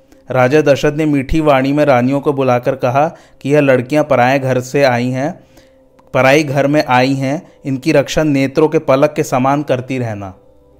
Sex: male